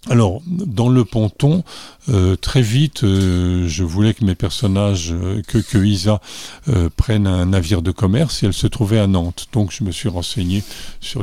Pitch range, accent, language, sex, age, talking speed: 90-110 Hz, French, French, male, 50-69, 185 wpm